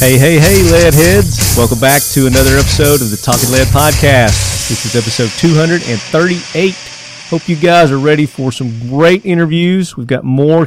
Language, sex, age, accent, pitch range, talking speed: English, male, 40-59, American, 110-140 Hz, 175 wpm